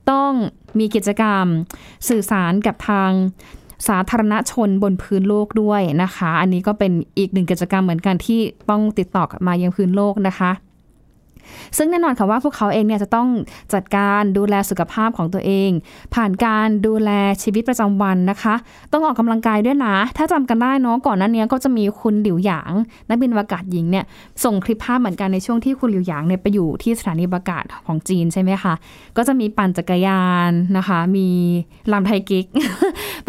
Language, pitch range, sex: Thai, 185-225 Hz, female